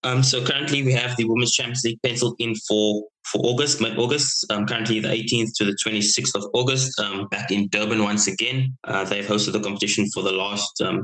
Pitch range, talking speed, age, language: 105-120 Hz, 210 wpm, 20-39, English